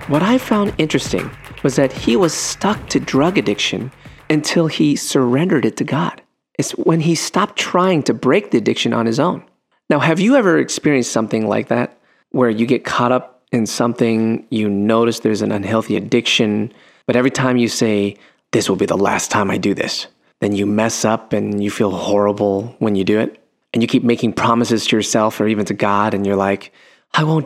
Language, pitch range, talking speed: English, 110-145 Hz, 205 wpm